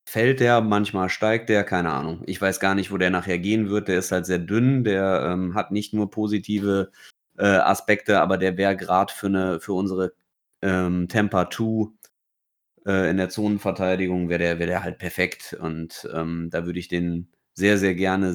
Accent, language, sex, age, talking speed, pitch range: German, German, male, 30-49, 190 wpm, 95-110 Hz